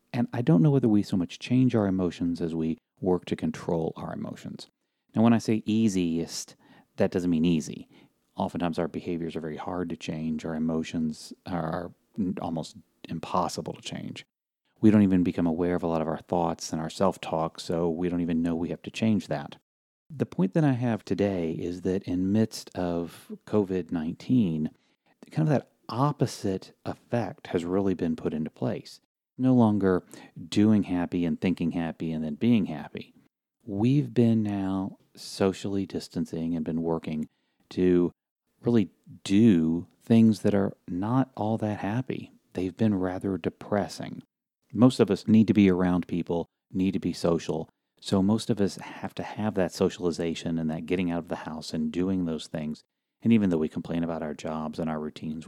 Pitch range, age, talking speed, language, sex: 85-105 Hz, 30-49, 180 wpm, English, male